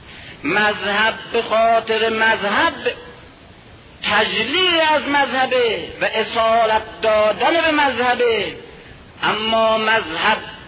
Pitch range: 205-275 Hz